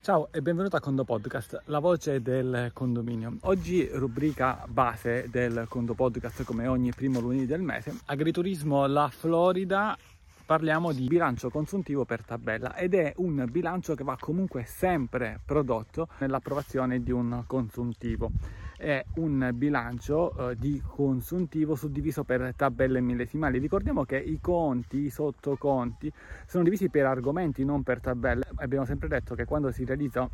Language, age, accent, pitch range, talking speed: Italian, 30-49, native, 125-160 Hz, 145 wpm